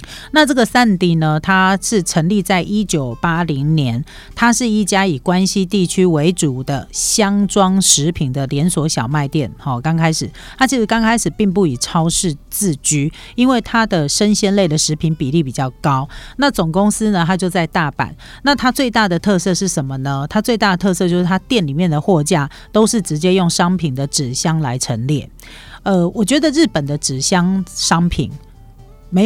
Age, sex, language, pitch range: 40-59, female, Chinese, 150-195 Hz